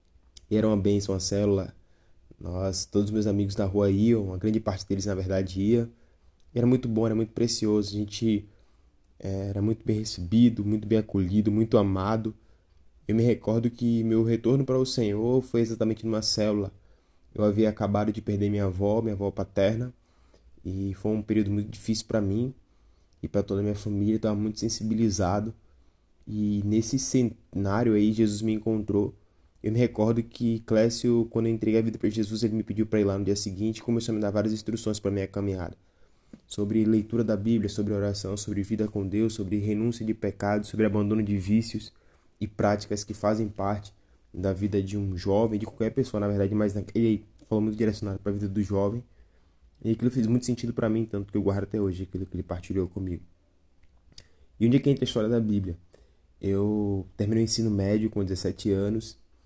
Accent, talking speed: Brazilian, 200 wpm